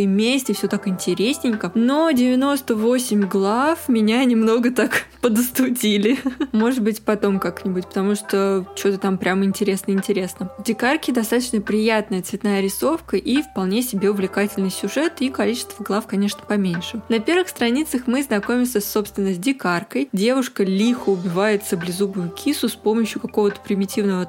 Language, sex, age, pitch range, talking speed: Russian, female, 20-39, 200-240 Hz, 135 wpm